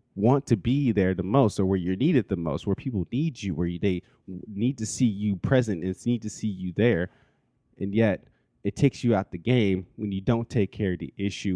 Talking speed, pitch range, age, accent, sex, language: 235 wpm, 95-115 Hz, 20-39, American, male, English